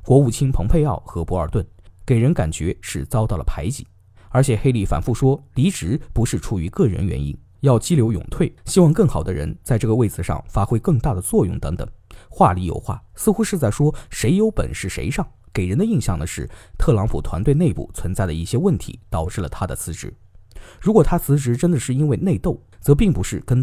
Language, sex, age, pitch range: Chinese, male, 20-39, 95-140 Hz